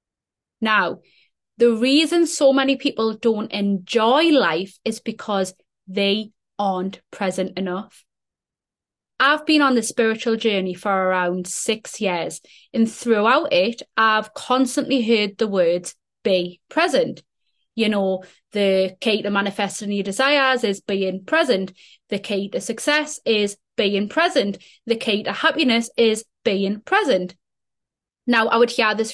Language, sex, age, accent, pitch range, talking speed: English, female, 20-39, British, 205-275 Hz, 135 wpm